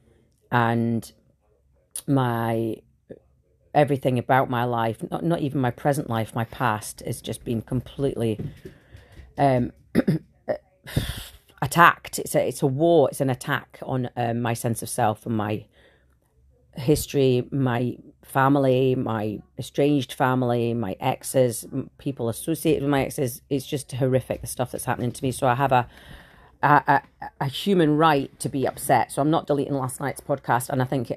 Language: English